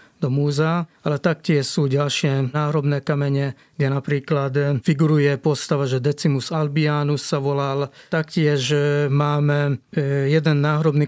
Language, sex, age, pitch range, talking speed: Slovak, male, 30-49, 140-155 Hz, 110 wpm